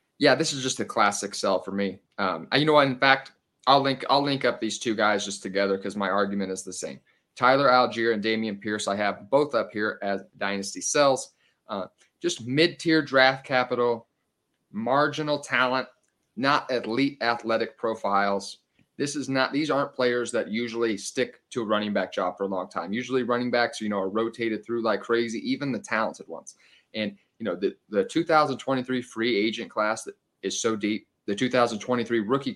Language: English